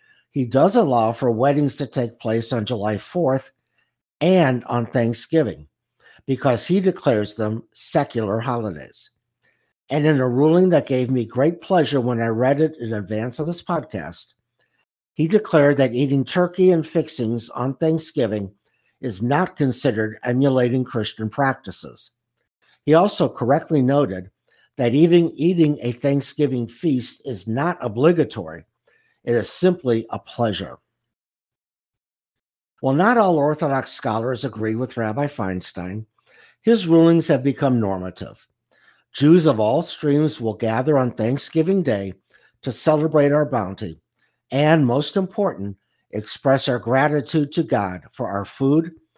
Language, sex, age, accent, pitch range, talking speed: English, male, 60-79, American, 115-155 Hz, 135 wpm